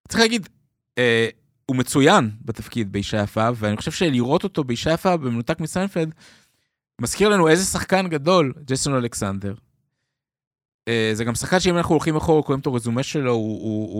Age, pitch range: 20-39, 110-155 Hz